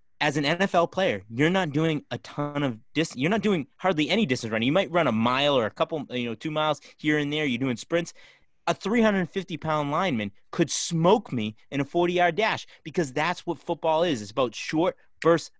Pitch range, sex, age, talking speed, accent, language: 115-175 Hz, male, 30-49, 210 wpm, American, English